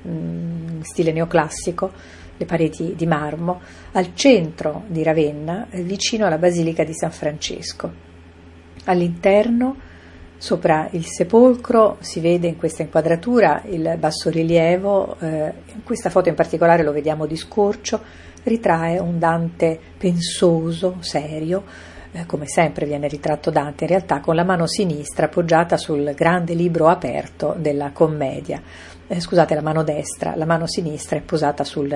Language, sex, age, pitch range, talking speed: Italian, female, 40-59, 150-175 Hz, 135 wpm